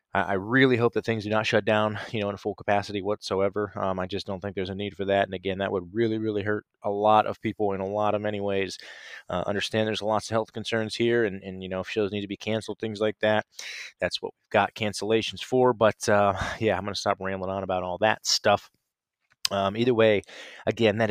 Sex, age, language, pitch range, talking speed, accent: male, 20-39, English, 100-115 Hz, 245 wpm, American